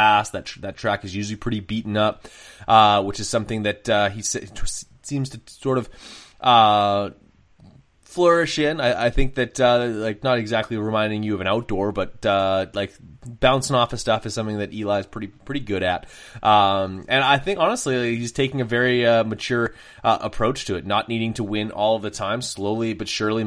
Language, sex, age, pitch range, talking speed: English, male, 20-39, 105-125 Hz, 205 wpm